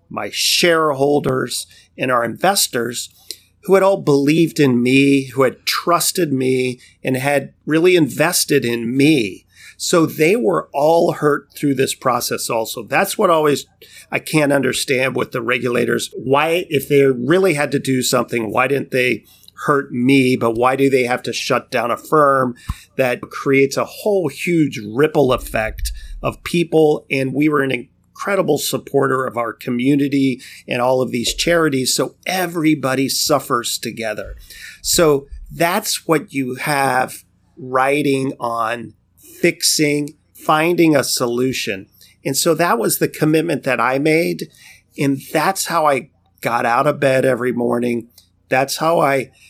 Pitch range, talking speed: 125-155 Hz, 150 wpm